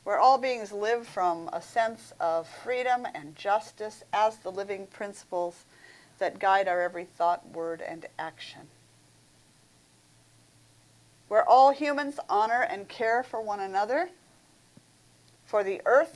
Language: English